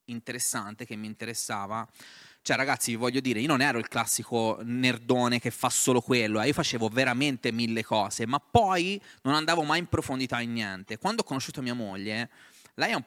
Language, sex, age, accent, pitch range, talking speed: Italian, male, 20-39, native, 115-135 Hz, 195 wpm